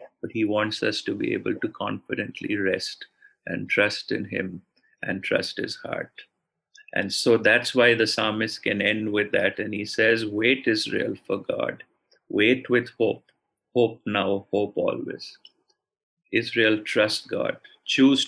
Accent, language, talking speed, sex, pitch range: Indian, English, 150 wpm, male, 105-135 Hz